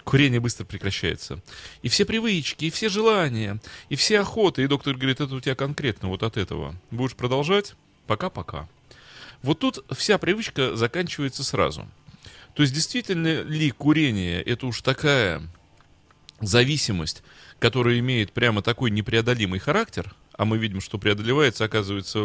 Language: Russian